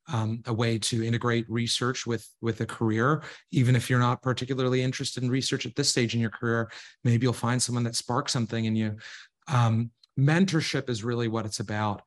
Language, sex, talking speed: English, male, 200 wpm